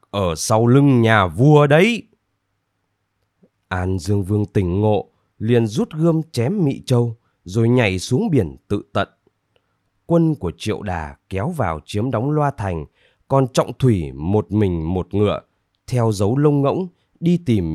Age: 20-39